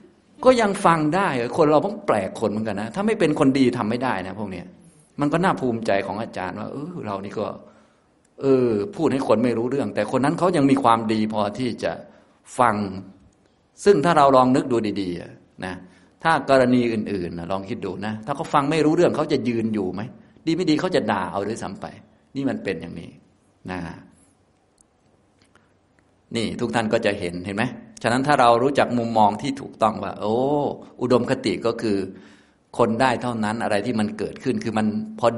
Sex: male